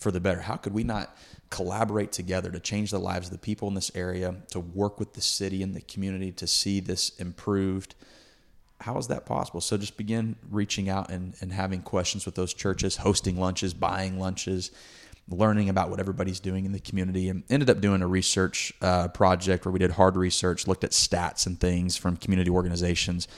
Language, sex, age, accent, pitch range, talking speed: English, male, 30-49, American, 90-100 Hz, 205 wpm